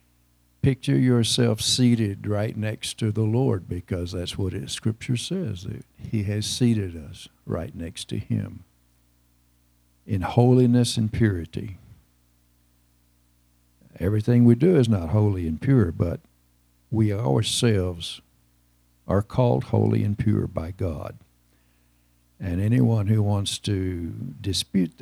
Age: 60-79